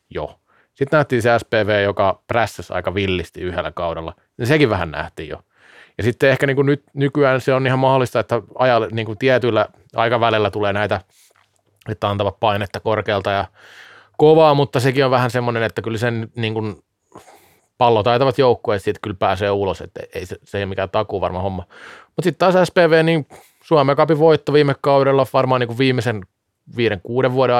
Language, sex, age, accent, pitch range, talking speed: Finnish, male, 30-49, native, 100-130 Hz, 170 wpm